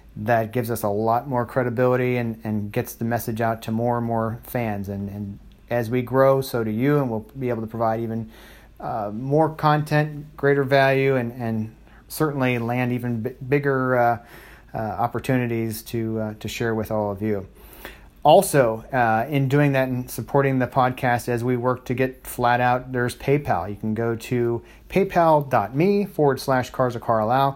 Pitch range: 115-130 Hz